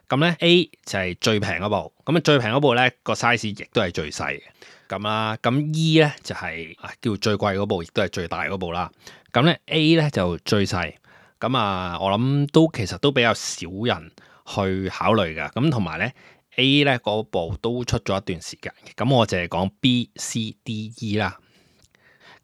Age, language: 20-39, Chinese